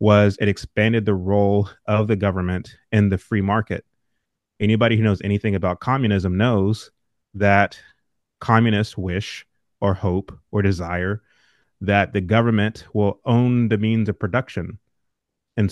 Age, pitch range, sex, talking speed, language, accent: 30-49, 95-110 Hz, male, 135 wpm, English, American